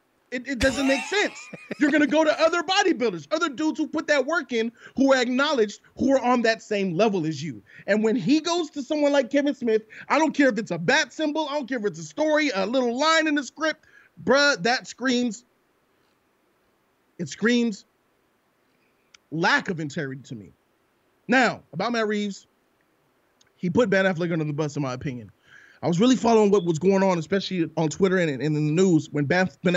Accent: American